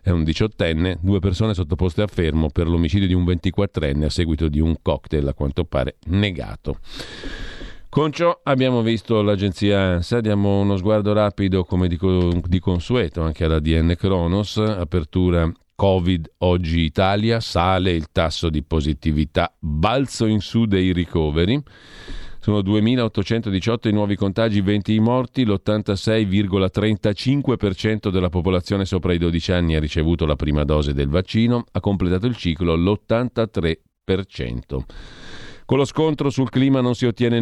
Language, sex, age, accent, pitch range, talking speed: Italian, male, 40-59, native, 80-105 Hz, 140 wpm